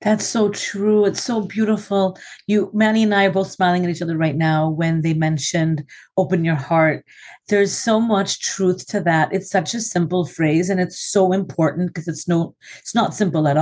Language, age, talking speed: English, 40-59, 205 wpm